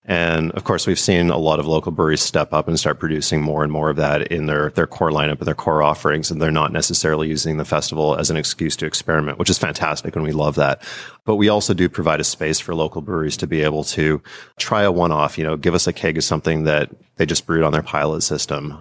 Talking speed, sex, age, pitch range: 260 wpm, male, 30-49, 75-90 Hz